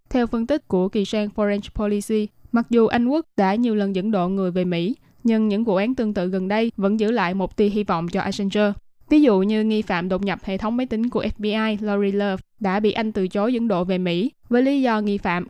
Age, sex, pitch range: 20-39, female, 195-230 Hz